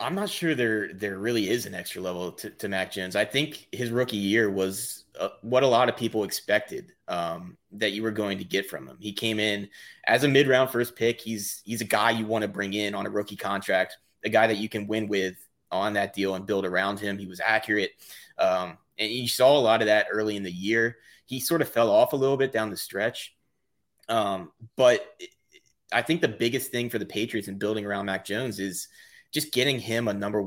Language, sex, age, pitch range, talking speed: English, male, 30-49, 100-115 Hz, 235 wpm